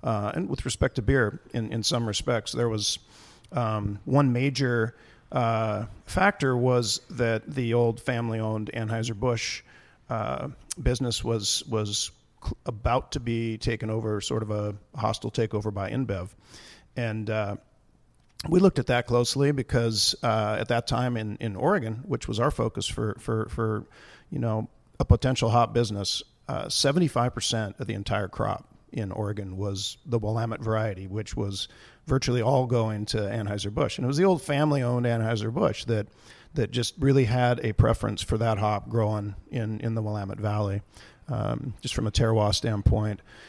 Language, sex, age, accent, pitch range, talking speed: English, male, 50-69, American, 105-125 Hz, 160 wpm